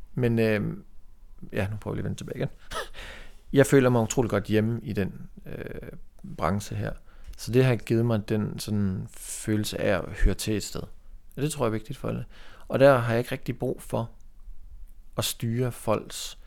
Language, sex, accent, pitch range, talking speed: Danish, male, native, 95-115 Hz, 205 wpm